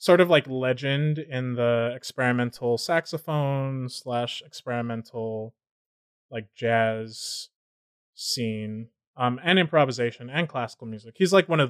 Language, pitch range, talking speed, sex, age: English, 120-145 Hz, 120 wpm, male, 20-39